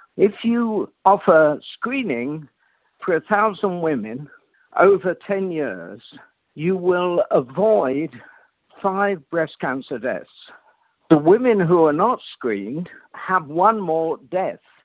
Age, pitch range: 60-79, 145-200 Hz